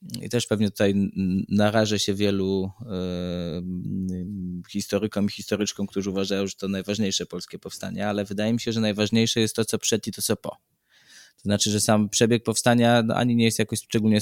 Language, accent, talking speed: Polish, native, 175 wpm